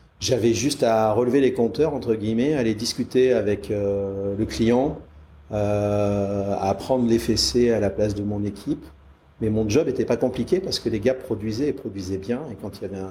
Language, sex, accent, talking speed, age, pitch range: French, male, French, 205 wpm, 40-59, 100-125 Hz